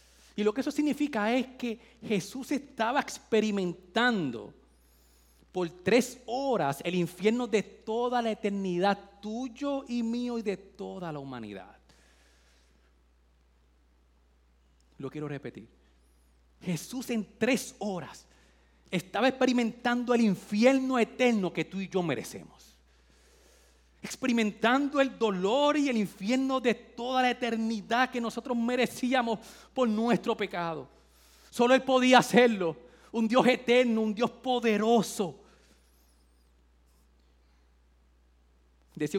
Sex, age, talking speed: male, 30-49, 110 wpm